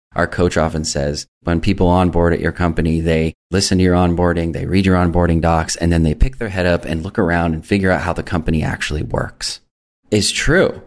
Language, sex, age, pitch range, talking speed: English, male, 20-39, 80-95 Hz, 220 wpm